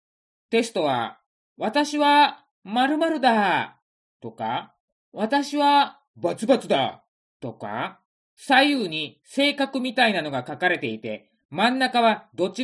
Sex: male